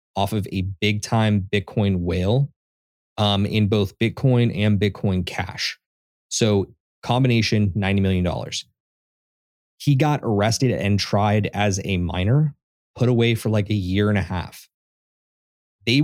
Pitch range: 95-115 Hz